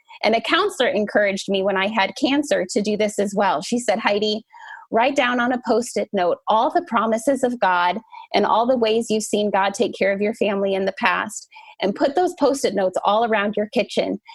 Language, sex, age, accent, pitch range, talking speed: English, female, 20-39, American, 200-250 Hz, 220 wpm